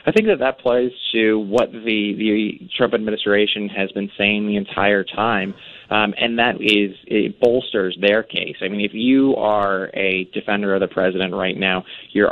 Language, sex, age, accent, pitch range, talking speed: English, male, 20-39, American, 100-130 Hz, 185 wpm